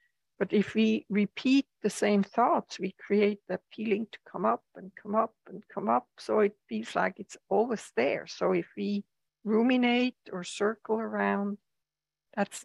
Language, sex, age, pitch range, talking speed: English, female, 60-79, 155-210 Hz, 165 wpm